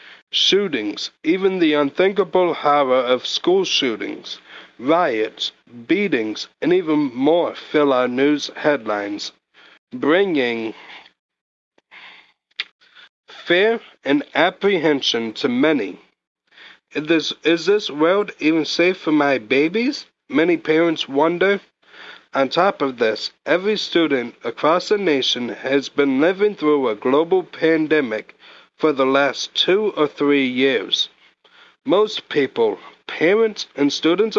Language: English